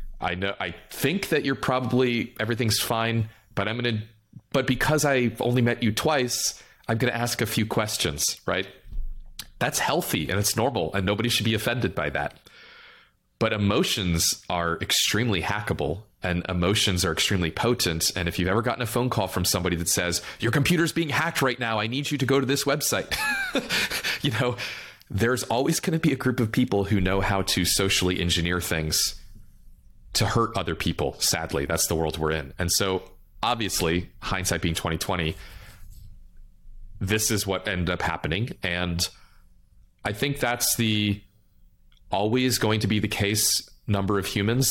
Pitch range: 90-120 Hz